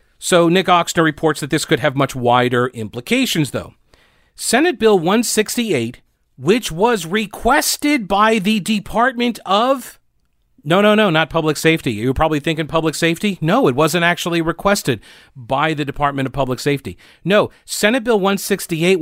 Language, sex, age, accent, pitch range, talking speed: English, male, 40-59, American, 145-220 Hz, 150 wpm